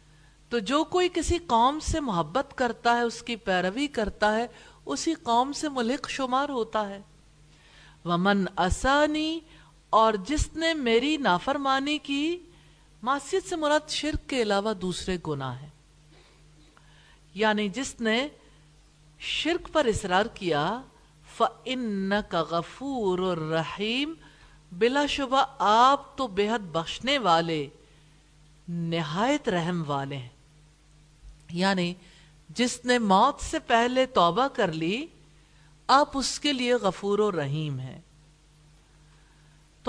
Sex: female